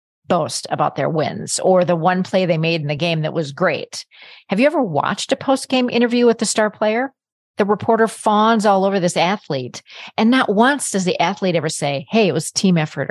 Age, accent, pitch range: 40-59, American, 165-230 Hz